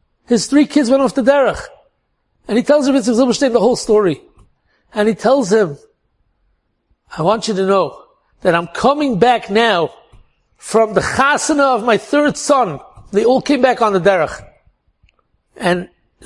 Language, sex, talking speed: English, male, 160 wpm